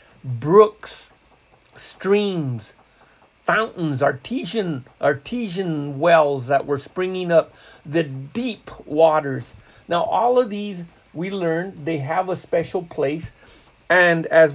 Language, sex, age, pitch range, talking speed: English, male, 50-69, 150-195 Hz, 105 wpm